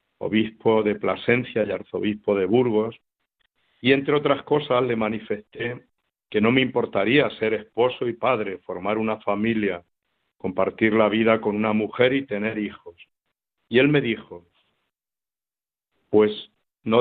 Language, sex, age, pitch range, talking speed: Spanish, male, 60-79, 105-125 Hz, 140 wpm